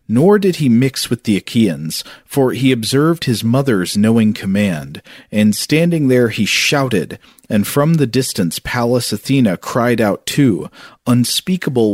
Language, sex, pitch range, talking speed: English, male, 105-130 Hz, 145 wpm